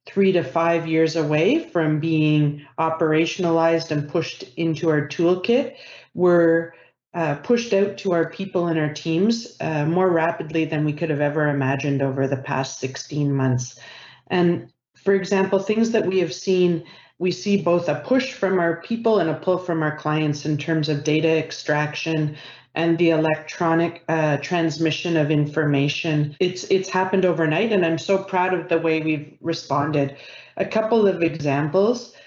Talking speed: 165 wpm